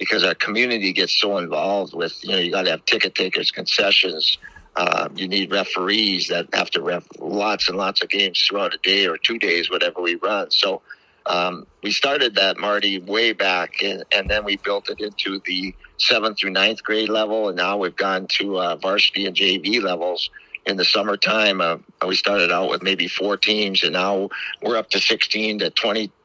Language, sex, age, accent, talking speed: English, male, 50-69, American, 200 wpm